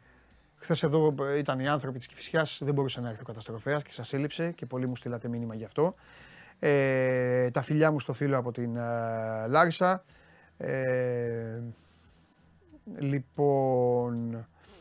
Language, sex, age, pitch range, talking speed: Greek, male, 30-49, 105-165 Hz, 140 wpm